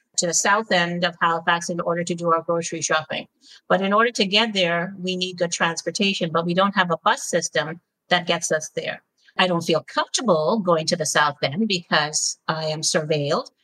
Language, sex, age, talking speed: English, female, 50-69, 205 wpm